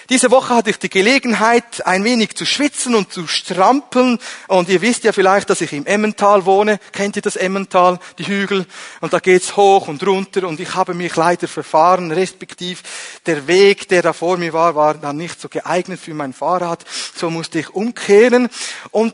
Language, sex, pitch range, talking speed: German, male, 165-215 Hz, 200 wpm